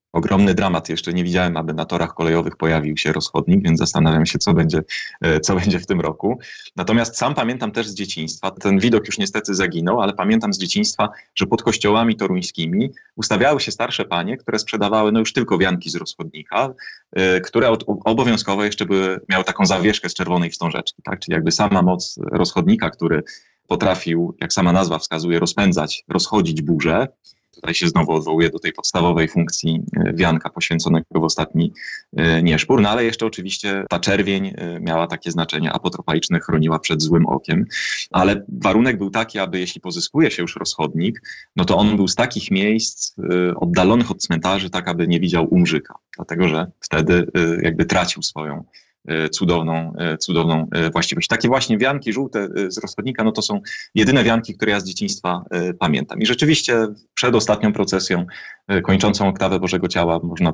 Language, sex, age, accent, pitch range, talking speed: Polish, male, 30-49, native, 85-105 Hz, 165 wpm